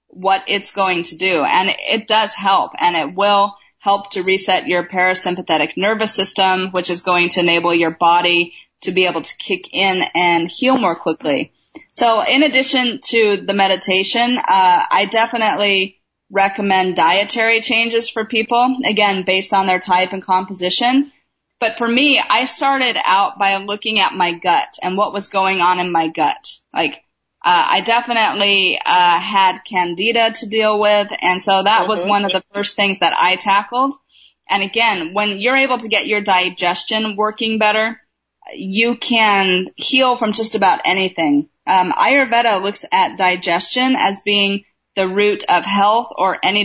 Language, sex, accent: English, female, American